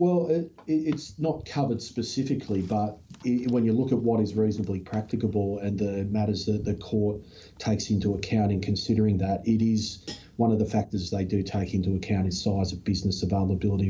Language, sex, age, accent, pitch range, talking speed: English, male, 40-59, Australian, 95-110 Hz, 190 wpm